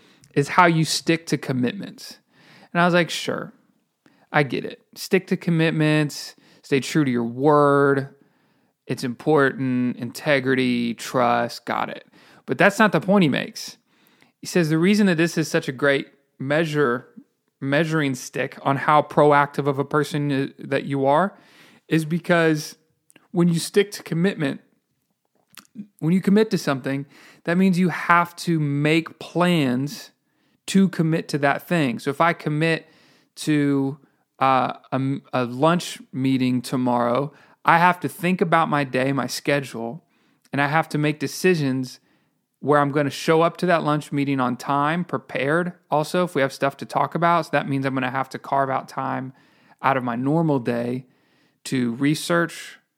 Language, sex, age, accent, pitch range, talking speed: English, male, 30-49, American, 135-170 Hz, 165 wpm